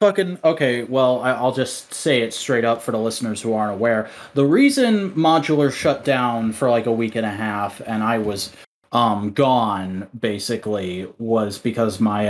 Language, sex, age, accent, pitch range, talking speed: English, male, 30-49, American, 115-145 Hz, 175 wpm